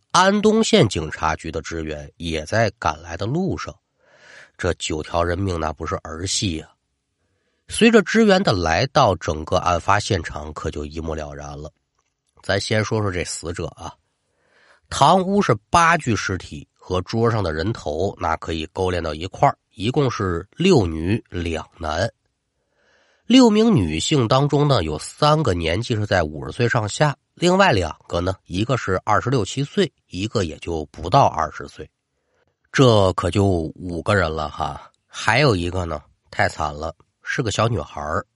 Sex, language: male, Chinese